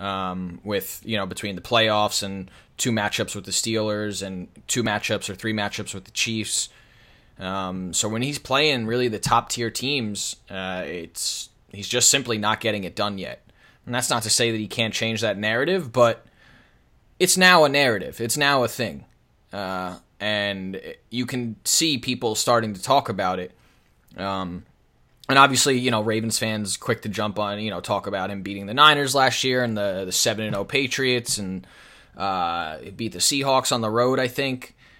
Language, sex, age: English, male, 20-39